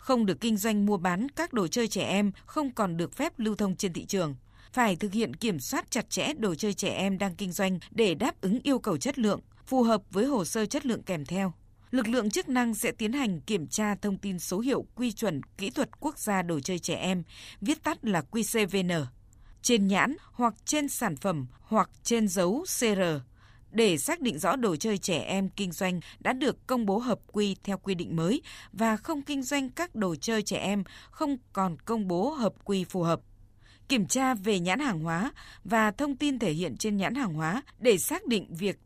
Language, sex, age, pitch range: Vietnamese, female, 20-39, 185-245 Hz